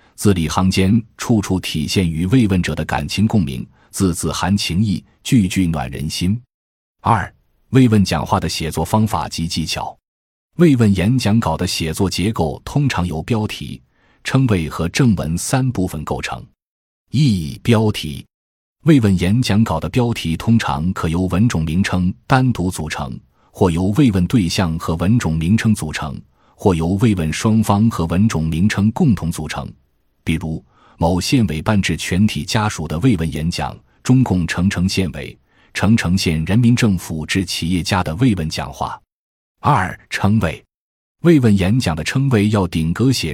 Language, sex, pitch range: Chinese, male, 80-110 Hz